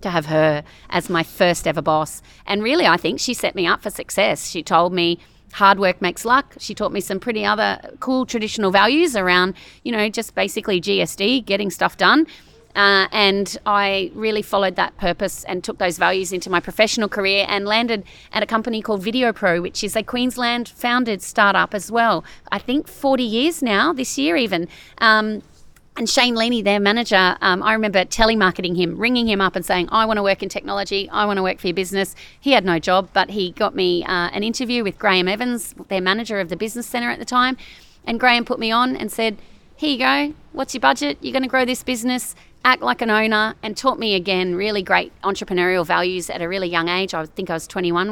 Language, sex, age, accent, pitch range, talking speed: English, female, 40-59, Australian, 185-235 Hz, 215 wpm